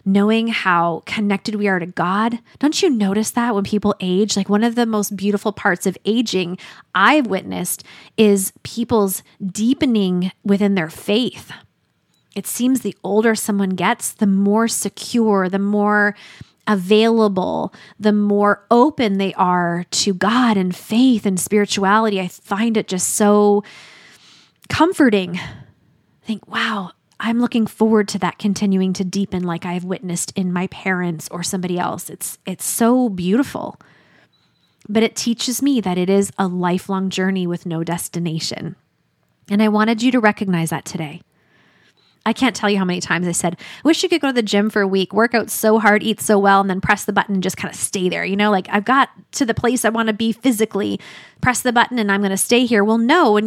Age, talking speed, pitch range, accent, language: 20-39, 190 wpm, 190-230 Hz, American, English